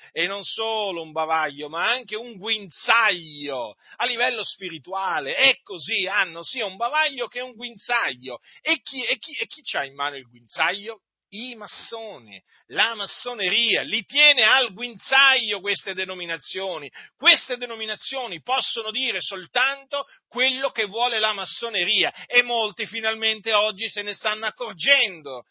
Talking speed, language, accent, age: 145 wpm, Italian, native, 40-59